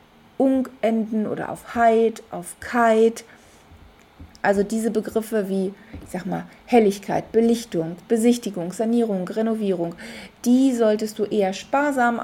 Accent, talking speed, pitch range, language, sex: German, 115 wpm, 205-240 Hz, German, female